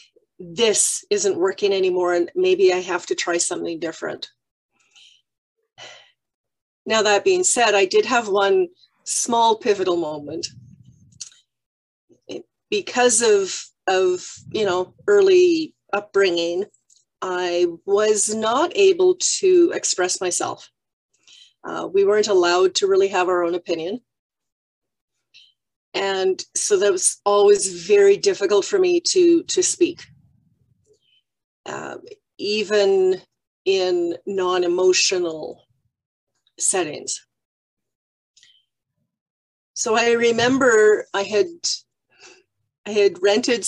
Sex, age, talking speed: female, 40-59, 100 wpm